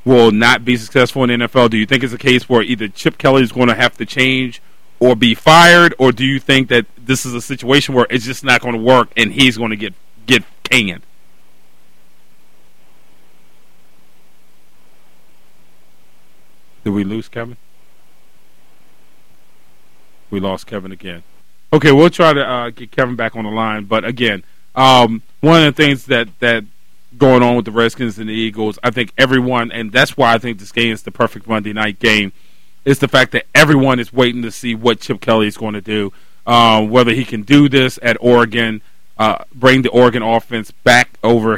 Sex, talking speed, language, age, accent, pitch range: male, 190 wpm, English, 40-59, American, 110-130 Hz